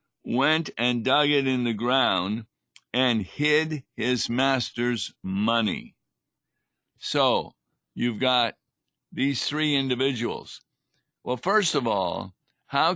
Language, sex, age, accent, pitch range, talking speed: English, male, 50-69, American, 115-135 Hz, 105 wpm